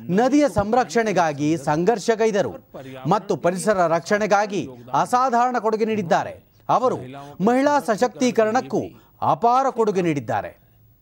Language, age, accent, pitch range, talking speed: Kannada, 30-49, native, 160-240 Hz, 80 wpm